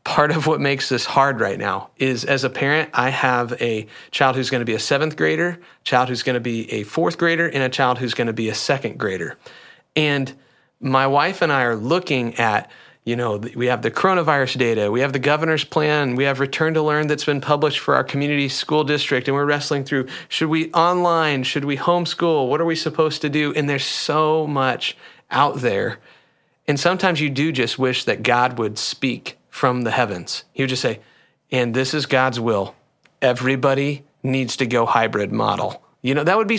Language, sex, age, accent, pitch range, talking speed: English, male, 40-59, American, 125-155 Hz, 215 wpm